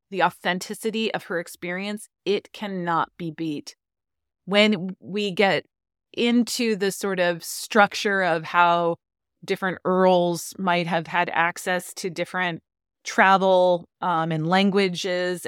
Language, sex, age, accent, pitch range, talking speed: English, female, 30-49, American, 160-190 Hz, 120 wpm